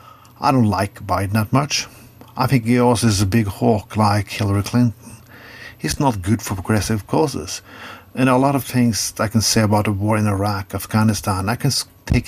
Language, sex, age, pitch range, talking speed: English, male, 50-69, 105-125 Hz, 195 wpm